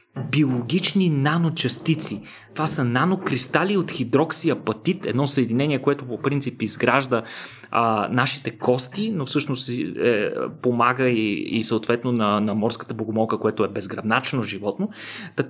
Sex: male